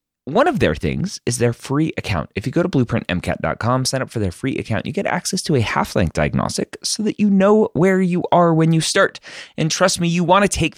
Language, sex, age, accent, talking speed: English, male, 30-49, American, 240 wpm